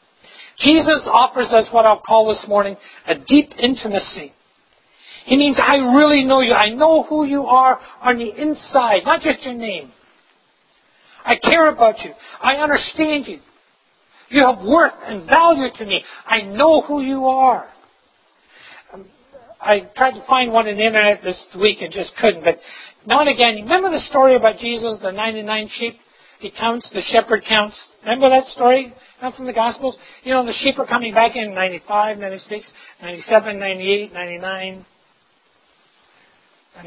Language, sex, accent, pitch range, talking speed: English, male, American, 205-275 Hz, 160 wpm